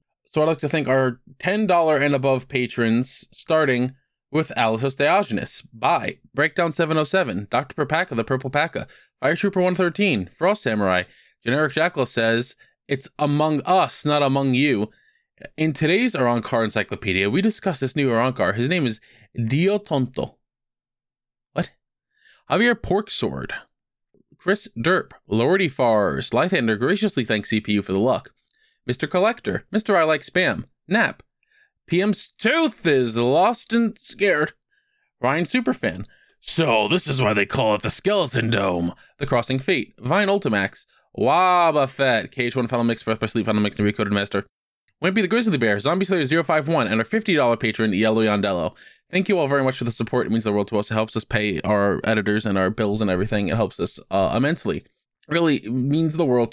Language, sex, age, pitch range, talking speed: English, male, 20-39, 115-175 Hz, 165 wpm